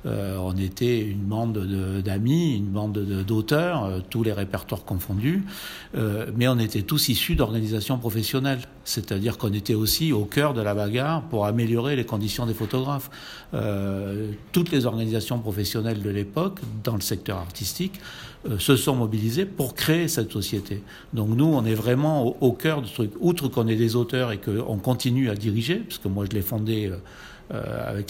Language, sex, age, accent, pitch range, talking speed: French, male, 60-79, French, 105-135 Hz, 180 wpm